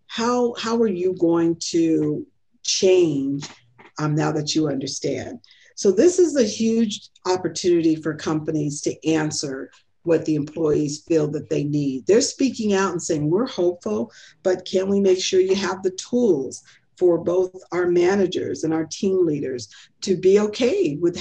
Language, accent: English, American